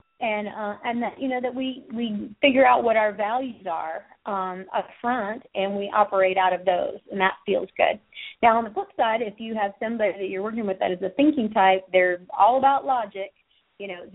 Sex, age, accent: female, 30-49, American